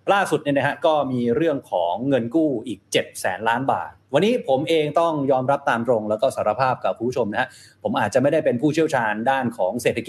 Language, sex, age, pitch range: Thai, male, 20-39, 115-150 Hz